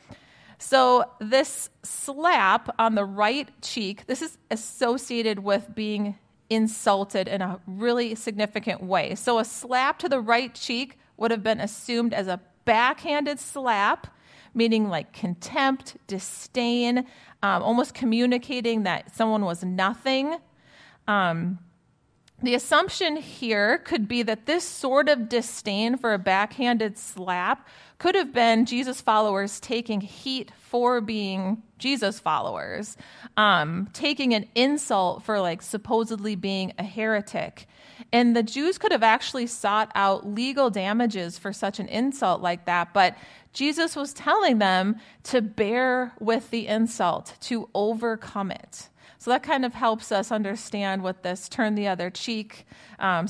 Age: 30-49